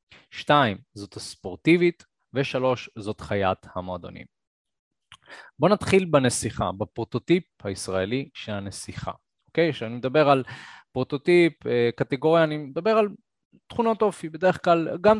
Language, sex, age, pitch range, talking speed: Hebrew, male, 20-39, 110-150 Hz, 110 wpm